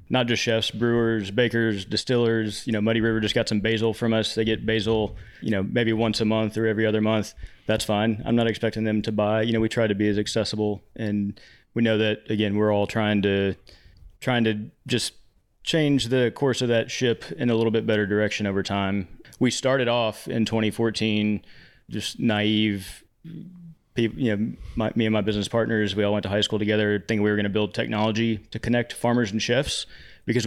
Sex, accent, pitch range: male, American, 105-120 Hz